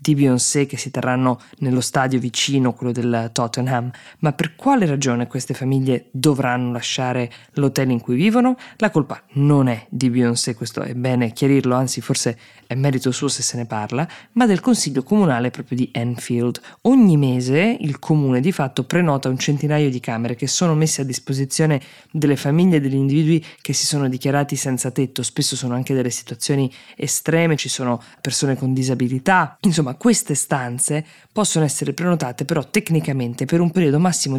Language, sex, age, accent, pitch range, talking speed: Italian, female, 20-39, native, 125-160 Hz, 175 wpm